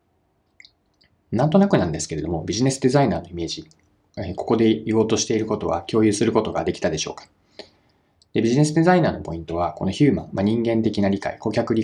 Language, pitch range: Japanese, 95-140 Hz